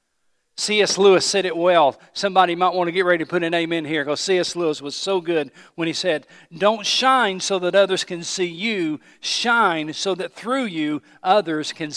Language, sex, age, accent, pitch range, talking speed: English, male, 50-69, American, 140-175 Hz, 200 wpm